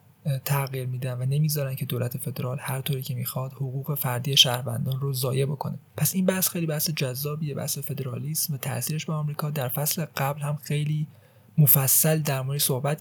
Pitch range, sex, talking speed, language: 130-150 Hz, male, 170 wpm, Persian